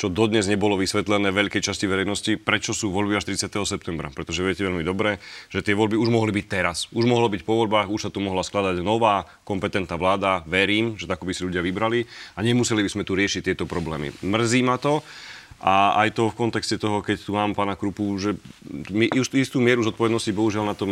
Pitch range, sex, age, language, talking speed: 95-110 Hz, male, 30-49, Slovak, 210 wpm